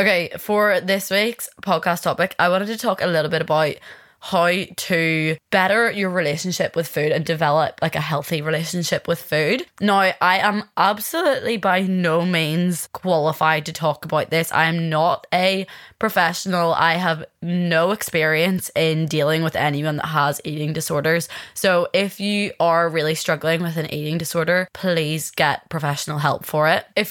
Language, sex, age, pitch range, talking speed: English, female, 20-39, 155-180 Hz, 165 wpm